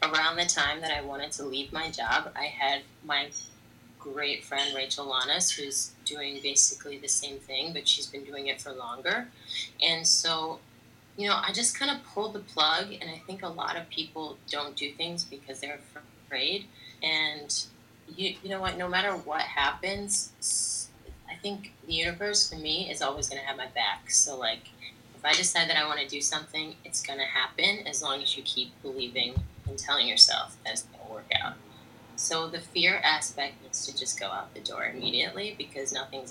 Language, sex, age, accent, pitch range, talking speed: English, female, 20-39, American, 135-170 Hz, 190 wpm